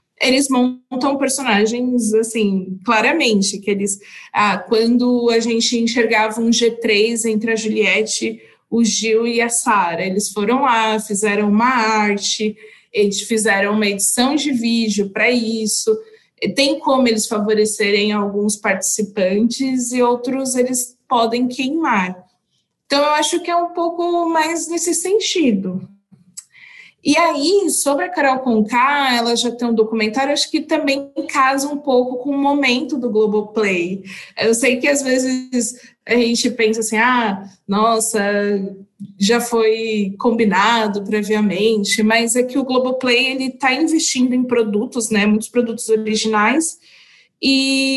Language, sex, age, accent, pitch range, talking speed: Portuguese, female, 20-39, Brazilian, 215-270 Hz, 135 wpm